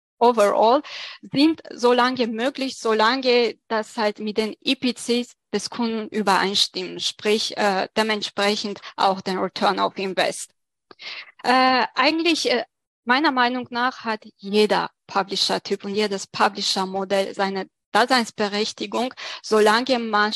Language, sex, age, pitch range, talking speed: German, female, 20-39, 205-240 Hz, 110 wpm